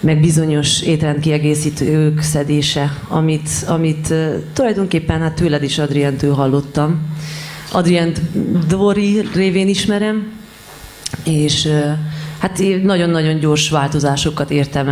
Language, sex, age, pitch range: Hungarian, female, 30-49, 145-165 Hz